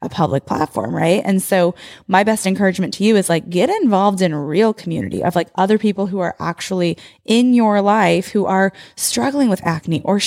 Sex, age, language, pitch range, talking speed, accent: female, 20-39, English, 175-215 Hz, 200 wpm, American